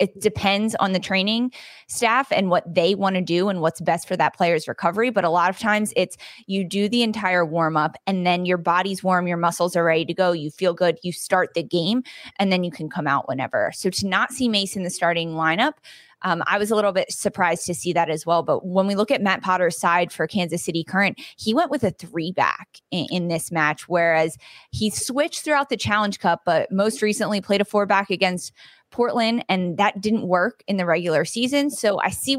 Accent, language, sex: American, English, female